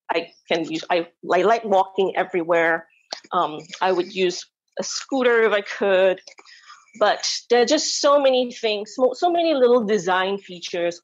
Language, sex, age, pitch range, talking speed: English, female, 30-49, 185-255 Hz, 165 wpm